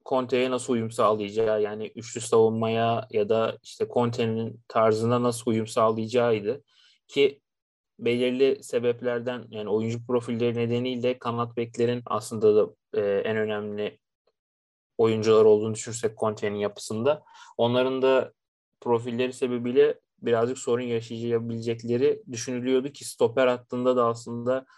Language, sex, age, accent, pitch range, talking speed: Turkish, male, 30-49, native, 115-135 Hz, 115 wpm